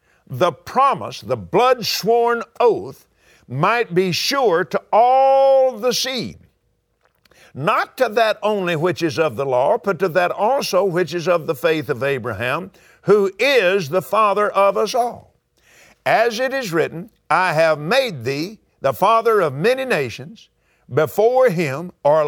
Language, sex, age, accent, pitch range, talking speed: English, male, 50-69, American, 175-245 Hz, 150 wpm